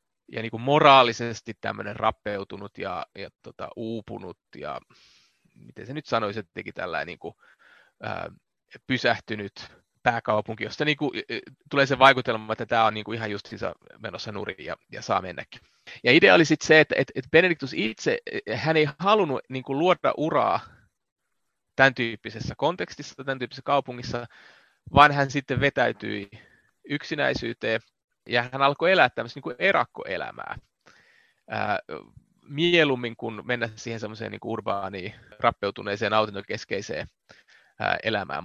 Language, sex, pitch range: Finnish, male, 110-145 Hz